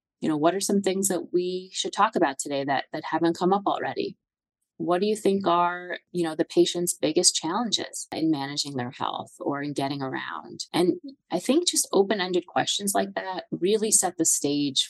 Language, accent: English, American